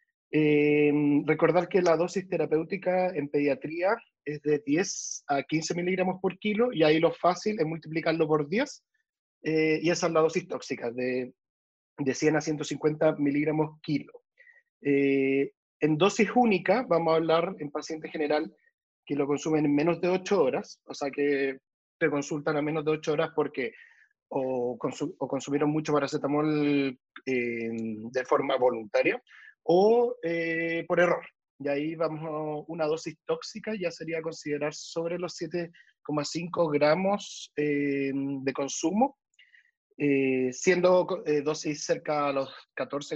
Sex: male